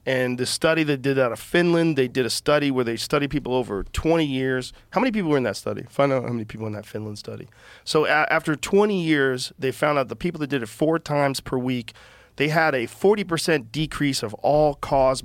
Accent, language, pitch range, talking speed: American, English, 120-150 Hz, 230 wpm